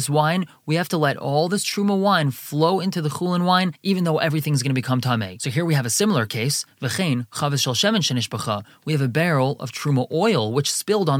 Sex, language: male, English